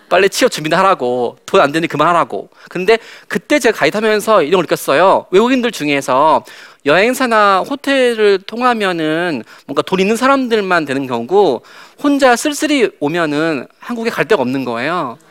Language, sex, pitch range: Korean, male, 165-245 Hz